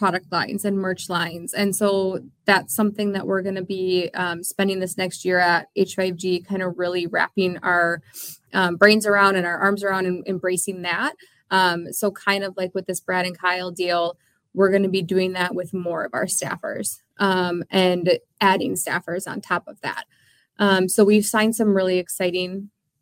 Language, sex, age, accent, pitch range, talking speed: English, female, 20-39, American, 180-200 Hz, 190 wpm